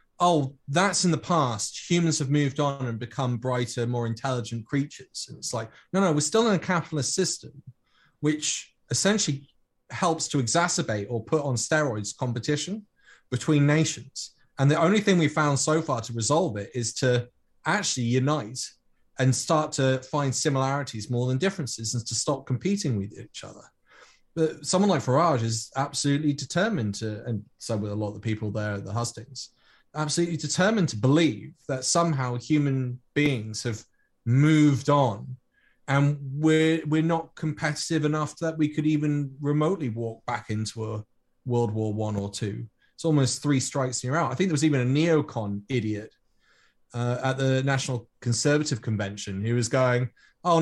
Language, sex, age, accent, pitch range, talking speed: English, male, 30-49, British, 120-155 Hz, 170 wpm